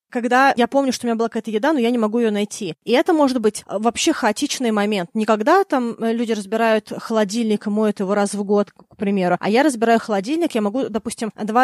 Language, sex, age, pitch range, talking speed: Russian, female, 20-39, 220-265 Hz, 220 wpm